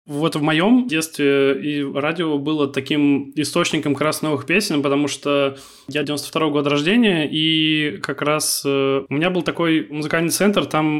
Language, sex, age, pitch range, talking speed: Russian, male, 20-39, 145-160 Hz, 165 wpm